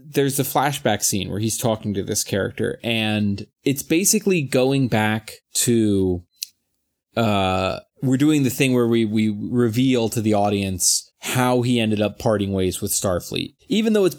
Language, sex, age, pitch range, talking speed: English, male, 30-49, 110-140 Hz, 170 wpm